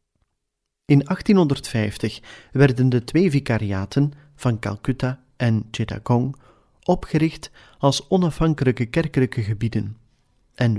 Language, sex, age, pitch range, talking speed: Dutch, male, 40-59, 110-145 Hz, 90 wpm